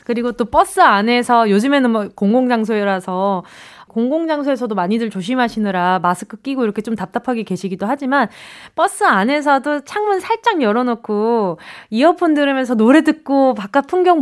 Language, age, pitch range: Korean, 20-39, 210-330 Hz